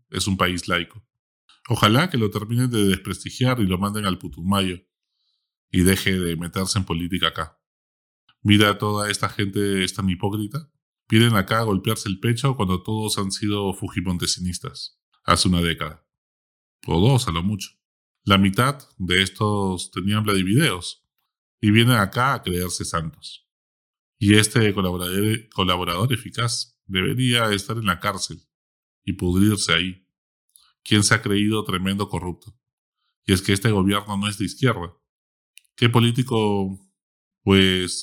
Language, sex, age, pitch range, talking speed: Spanish, male, 20-39, 95-115 Hz, 140 wpm